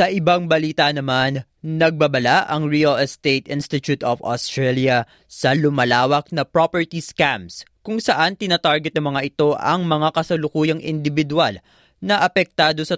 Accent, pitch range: native, 120-155 Hz